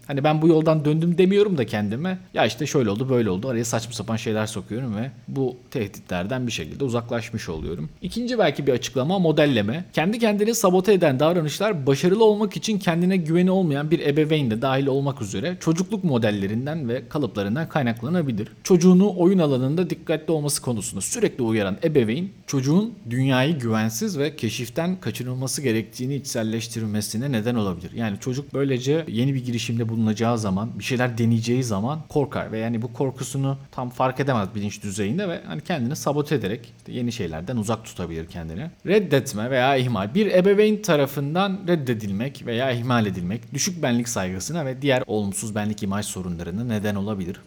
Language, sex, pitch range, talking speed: Turkish, male, 115-175 Hz, 160 wpm